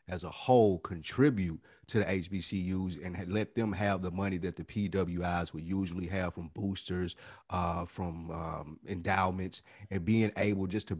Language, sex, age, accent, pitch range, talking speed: English, male, 40-59, American, 90-105 Hz, 165 wpm